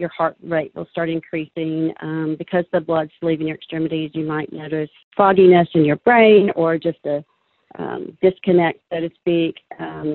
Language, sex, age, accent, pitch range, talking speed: English, female, 40-59, American, 160-180 Hz, 170 wpm